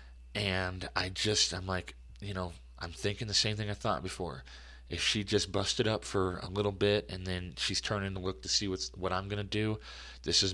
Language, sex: English, male